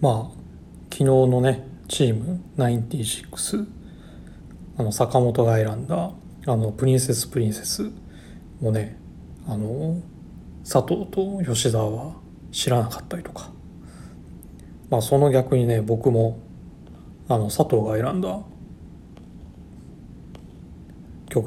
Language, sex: Japanese, male